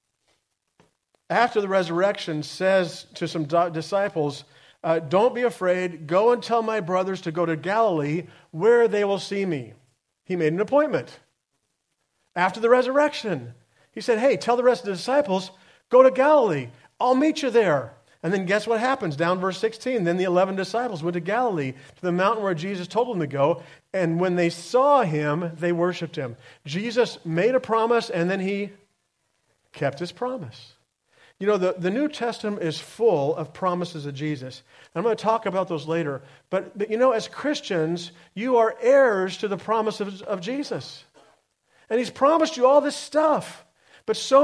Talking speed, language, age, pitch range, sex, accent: 180 wpm, English, 40-59, 165-230 Hz, male, American